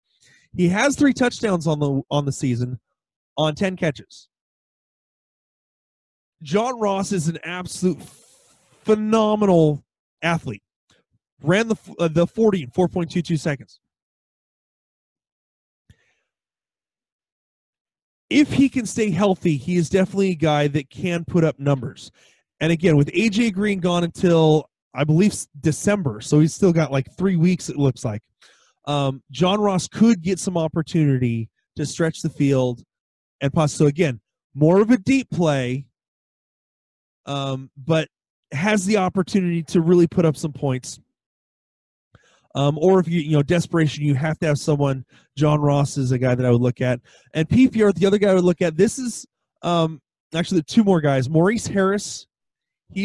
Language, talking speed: English, 155 wpm